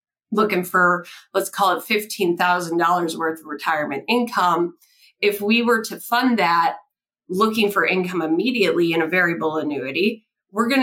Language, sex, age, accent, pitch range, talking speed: English, female, 30-49, American, 170-210 Hz, 145 wpm